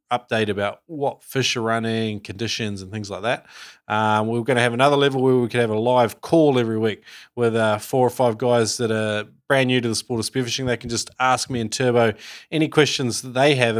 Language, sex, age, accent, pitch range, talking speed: English, male, 20-39, Australian, 110-140 Hz, 235 wpm